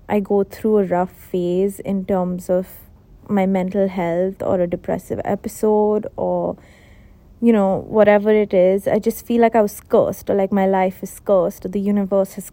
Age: 30-49